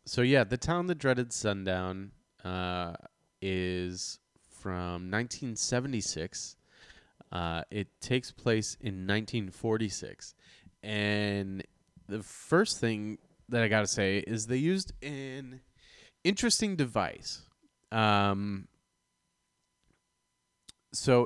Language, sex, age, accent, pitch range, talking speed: English, male, 20-39, American, 90-115 Hz, 95 wpm